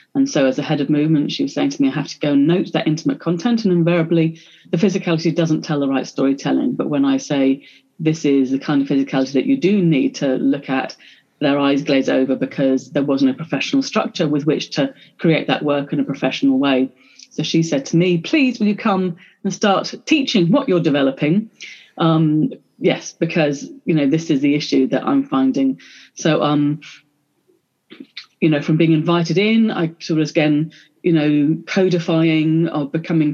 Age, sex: 30-49, female